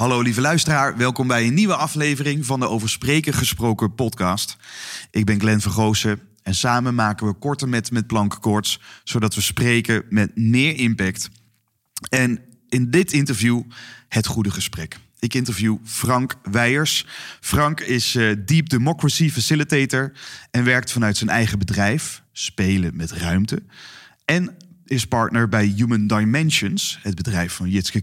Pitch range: 110-145 Hz